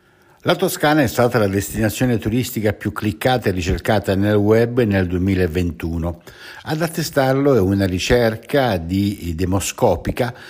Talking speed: 125 wpm